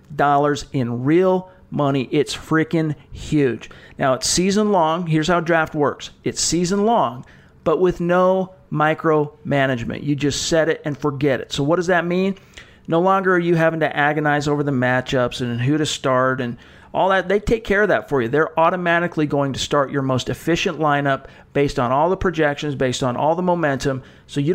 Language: English